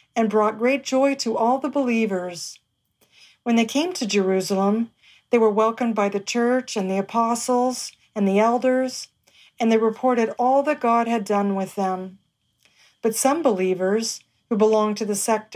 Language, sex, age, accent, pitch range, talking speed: English, female, 40-59, American, 195-240 Hz, 165 wpm